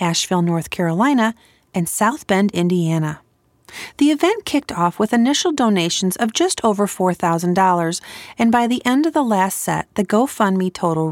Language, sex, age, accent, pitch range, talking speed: English, female, 40-59, American, 175-235 Hz, 155 wpm